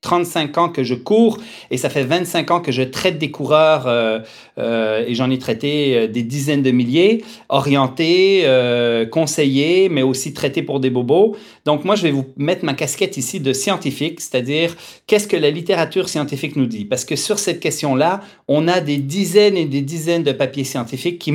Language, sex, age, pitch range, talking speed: French, male, 40-59, 135-180 Hz, 195 wpm